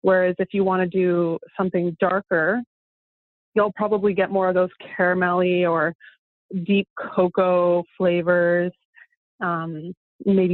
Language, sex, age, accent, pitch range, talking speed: English, female, 20-39, American, 175-200 Hz, 120 wpm